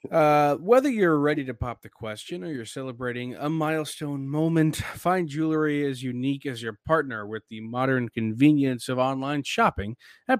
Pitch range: 115-140 Hz